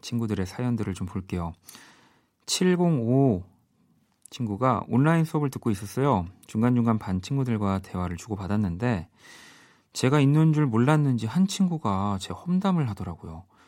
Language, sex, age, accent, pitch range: Korean, male, 40-59, native, 95-130 Hz